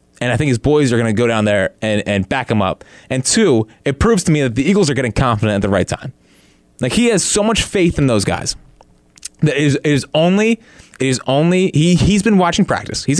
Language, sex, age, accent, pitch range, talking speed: English, male, 20-39, American, 110-170 Hz, 250 wpm